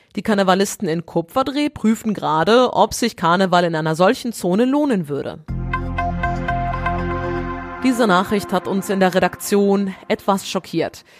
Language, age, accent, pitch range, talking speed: German, 30-49, German, 170-215 Hz, 130 wpm